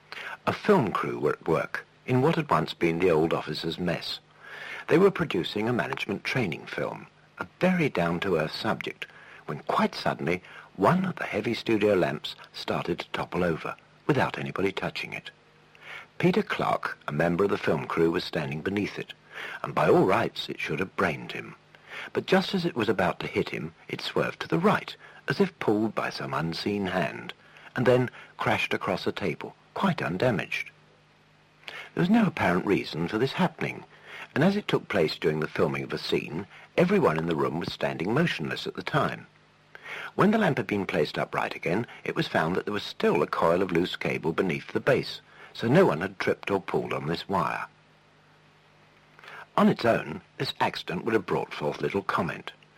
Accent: British